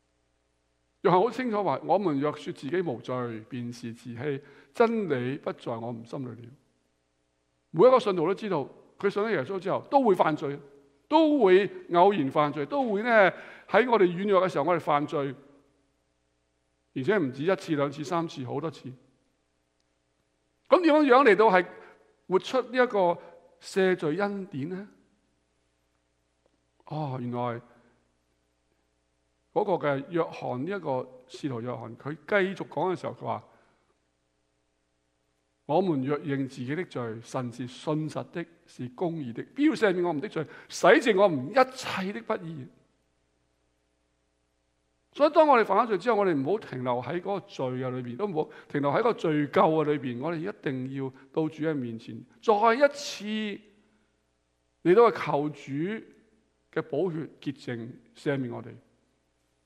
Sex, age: male, 60-79